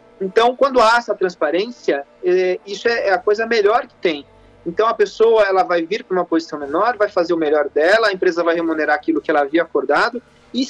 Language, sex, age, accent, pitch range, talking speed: Portuguese, male, 40-59, Brazilian, 175-260 Hz, 215 wpm